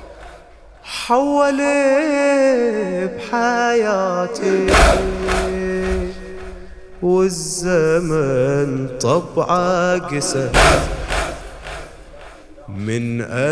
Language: English